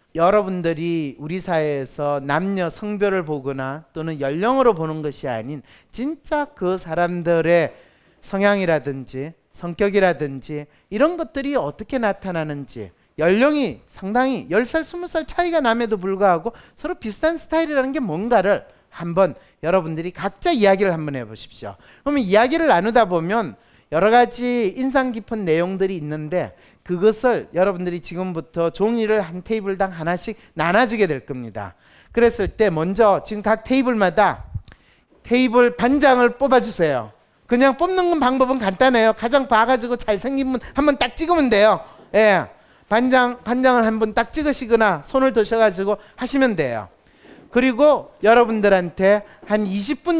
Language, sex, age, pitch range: Korean, male, 40-59, 170-255 Hz